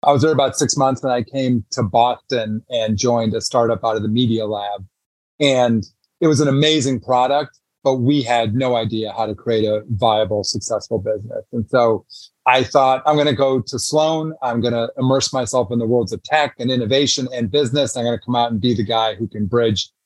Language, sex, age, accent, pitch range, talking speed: English, male, 30-49, American, 115-135 Hz, 220 wpm